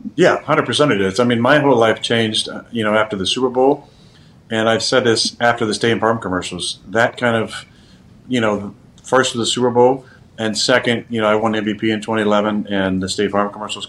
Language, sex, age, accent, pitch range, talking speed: English, male, 40-59, American, 100-120 Hz, 220 wpm